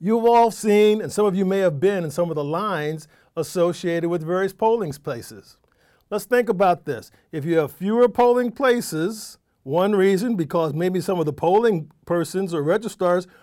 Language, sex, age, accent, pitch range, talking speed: English, male, 50-69, American, 165-220 Hz, 185 wpm